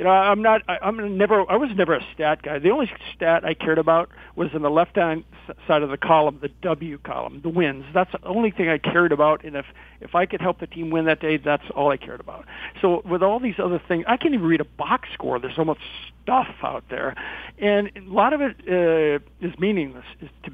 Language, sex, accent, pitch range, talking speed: English, male, American, 150-190 Hz, 240 wpm